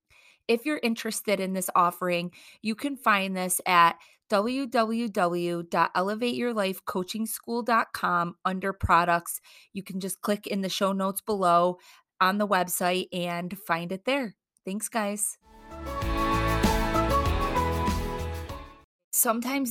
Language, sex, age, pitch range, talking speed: English, female, 20-39, 170-210 Hz, 100 wpm